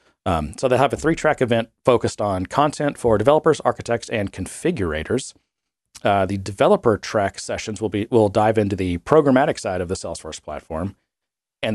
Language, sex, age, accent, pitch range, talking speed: English, male, 40-59, American, 105-145 Hz, 165 wpm